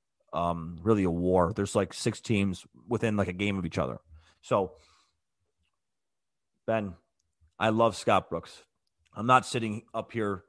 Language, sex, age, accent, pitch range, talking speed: English, male, 30-49, American, 100-140 Hz, 150 wpm